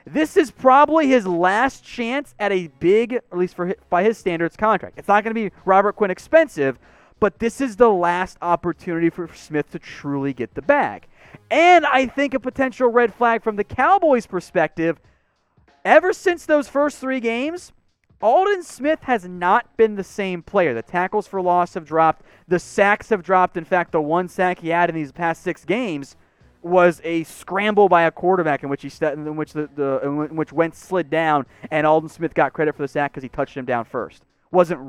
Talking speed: 205 wpm